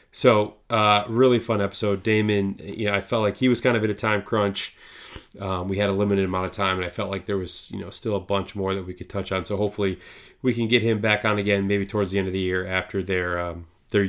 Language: English